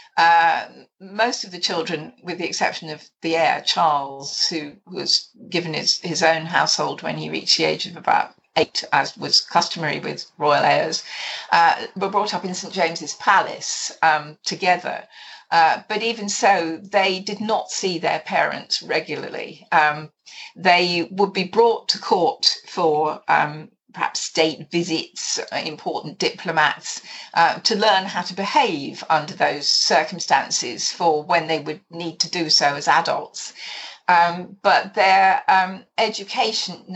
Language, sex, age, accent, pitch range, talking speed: English, female, 50-69, British, 165-220 Hz, 150 wpm